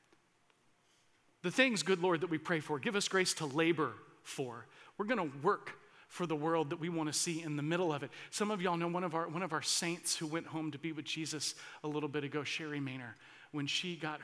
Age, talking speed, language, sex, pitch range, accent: 40-59, 245 wpm, English, male, 155-190 Hz, American